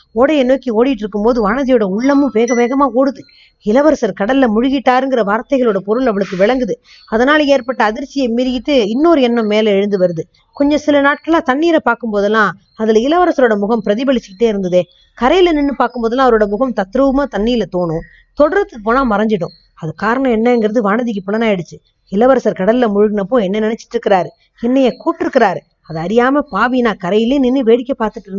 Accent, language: native, Tamil